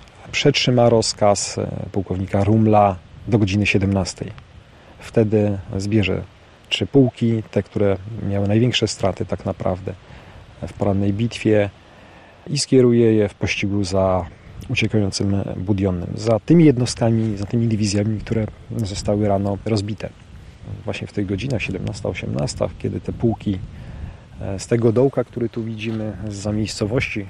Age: 40-59